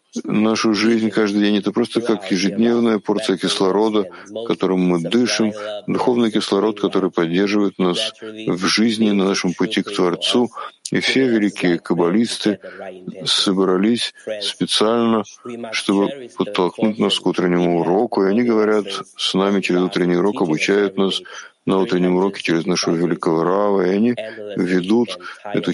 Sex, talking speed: male, 135 wpm